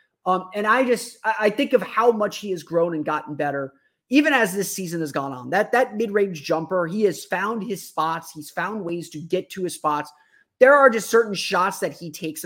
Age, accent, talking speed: 30-49, American, 225 wpm